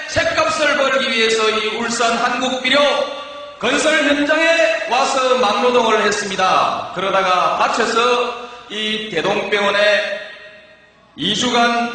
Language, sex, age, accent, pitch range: Korean, male, 40-59, native, 250-345 Hz